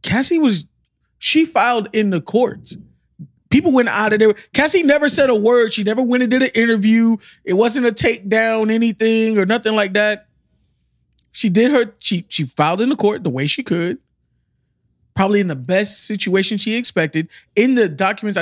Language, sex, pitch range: English, male, 145-210 Hz